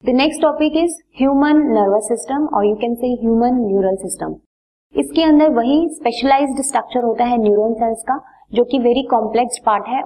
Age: 20-39